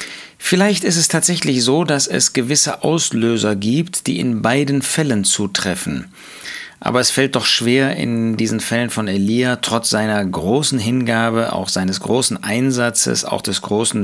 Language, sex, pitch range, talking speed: German, male, 110-135 Hz, 155 wpm